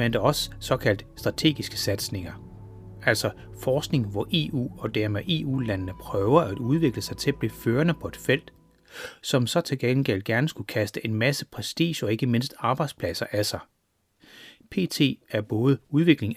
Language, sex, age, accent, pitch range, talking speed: Danish, male, 30-49, native, 105-150 Hz, 160 wpm